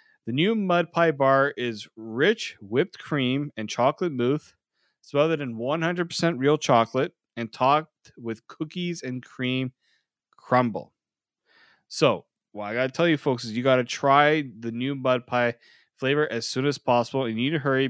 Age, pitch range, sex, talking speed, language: 20-39, 115-155 Hz, male, 165 wpm, English